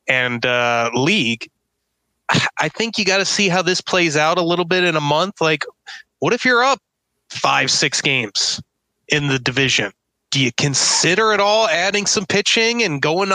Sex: male